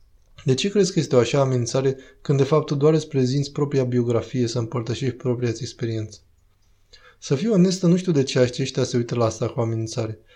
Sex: male